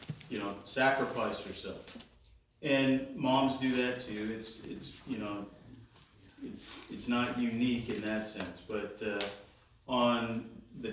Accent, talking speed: American, 130 wpm